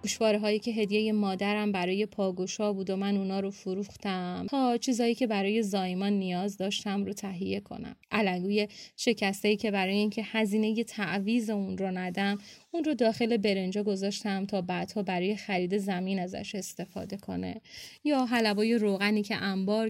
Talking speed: 155 wpm